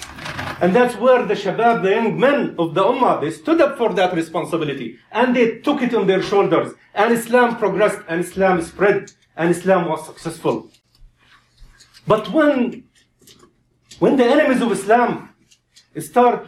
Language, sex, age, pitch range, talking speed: English, male, 50-69, 185-240 Hz, 155 wpm